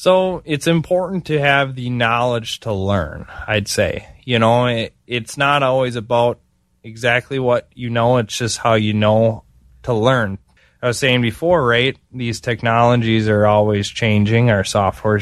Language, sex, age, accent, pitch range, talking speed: English, male, 20-39, American, 110-130 Hz, 160 wpm